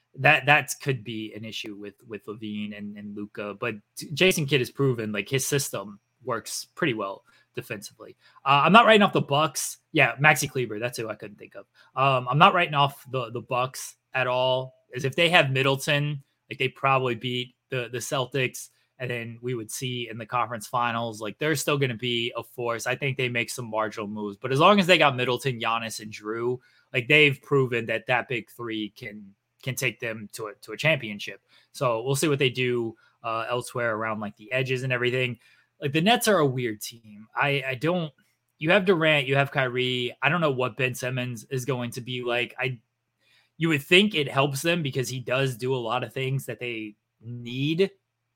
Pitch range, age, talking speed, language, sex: 115-145 Hz, 20-39, 210 wpm, English, male